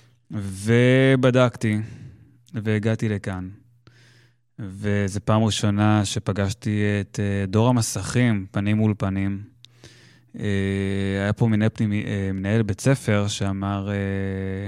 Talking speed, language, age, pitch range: 80 wpm, Hebrew, 20-39, 105-125 Hz